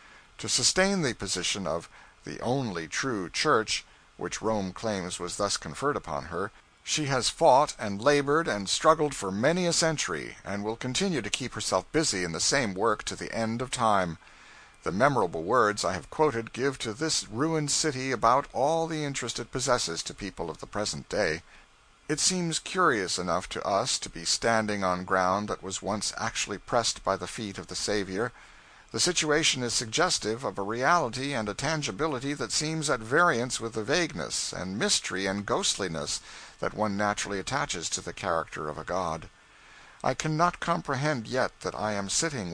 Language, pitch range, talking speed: English, 100-145 Hz, 180 wpm